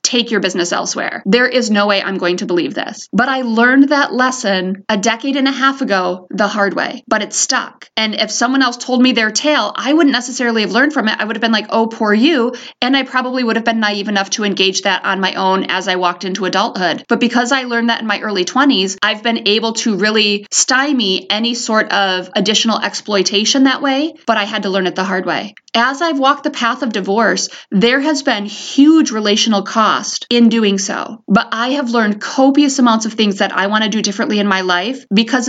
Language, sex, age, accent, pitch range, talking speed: English, female, 20-39, American, 205-250 Hz, 230 wpm